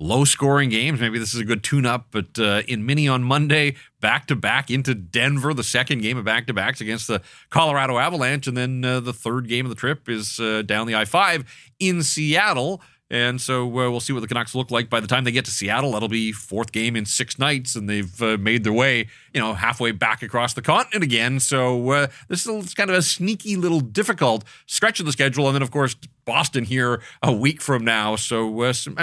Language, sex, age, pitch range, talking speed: English, male, 30-49, 110-140 Hz, 225 wpm